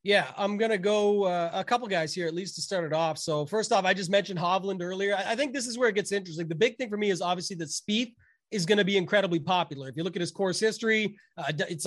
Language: English